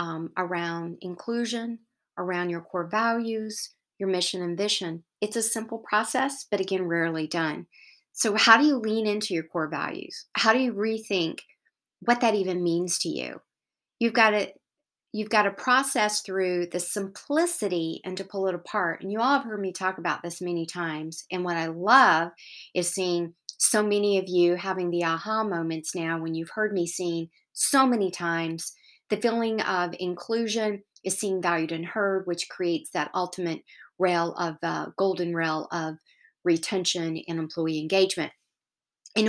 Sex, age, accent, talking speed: female, 40-59, American, 170 wpm